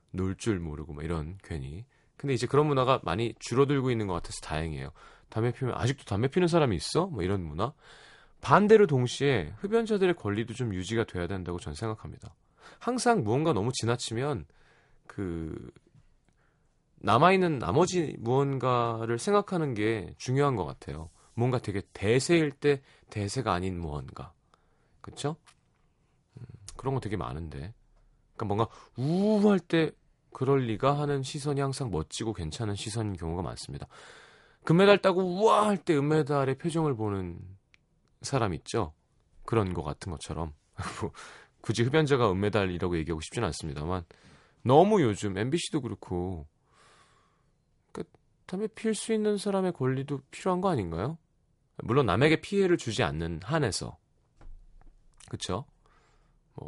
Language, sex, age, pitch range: Korean, male, 30-49, 95-145 Hz